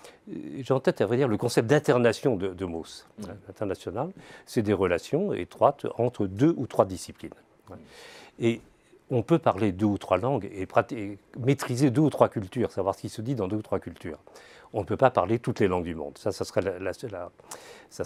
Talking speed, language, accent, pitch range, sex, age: 195 wpm, French, French, 100-140 Hz, male, 40-59